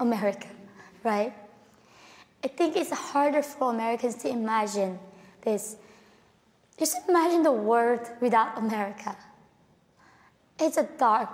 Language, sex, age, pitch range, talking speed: English, female, 20-39, 225-285 Hz, 105 wpm